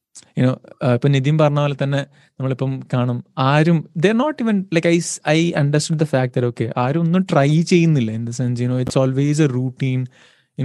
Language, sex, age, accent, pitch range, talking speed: Malayalam, male, 20-39, native, 135-180 Hz, 185 wpm